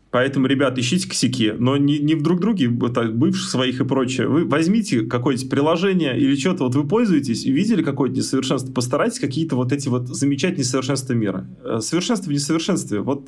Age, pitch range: 20-39, 120-145 Hz